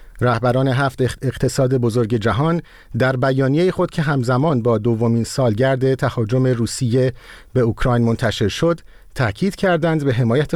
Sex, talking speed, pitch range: male, 130 wpm, 115-155 Hz